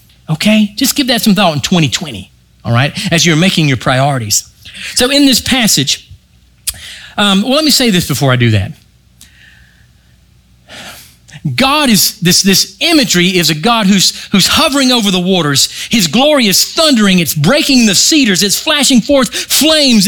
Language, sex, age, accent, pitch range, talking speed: English, male, 40-59, American, 140-225 Hz, 165 wpm